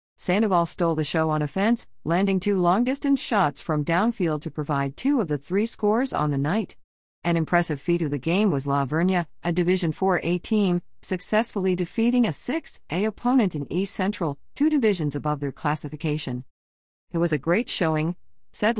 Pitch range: 150-200 Hz